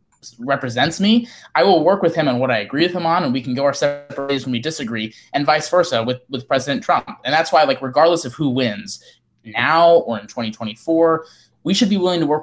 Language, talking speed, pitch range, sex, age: English, 235 wpm, 120-145 Hz, male, 20-39